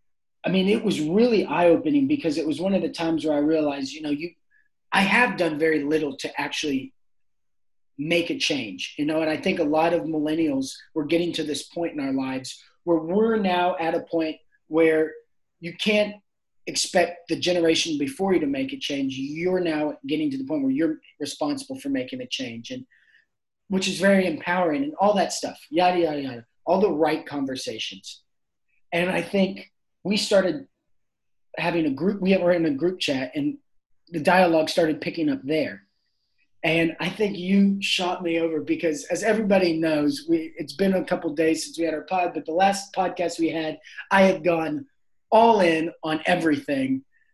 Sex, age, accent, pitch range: male, 30-49, American, 160-210 Hz